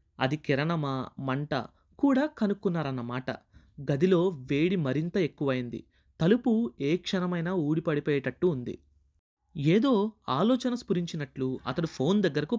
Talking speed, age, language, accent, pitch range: 95 wpm, 20-39, Telugu, native, 130-185 Hz